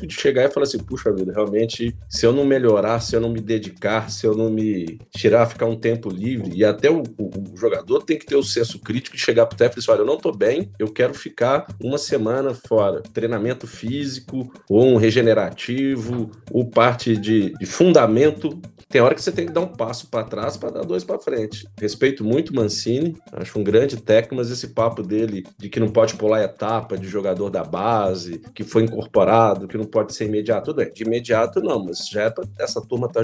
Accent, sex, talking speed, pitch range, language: Brazilian, male, 220 wpm, 110-140 Hz, Portuguese